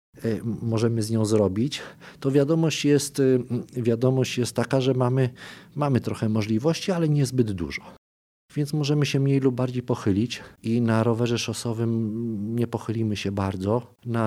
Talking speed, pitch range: 145 wpm, 100-120 Hz